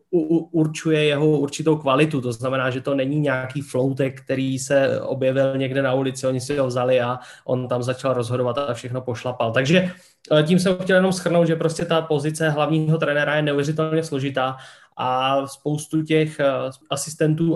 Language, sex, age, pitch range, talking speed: Slovak, male, 20-39, 130-155 Hz, 165 wpm